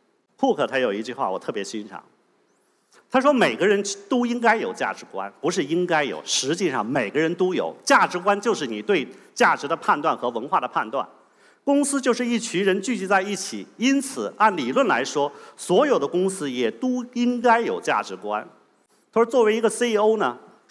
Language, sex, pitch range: Chinese, male, 160-235 Hz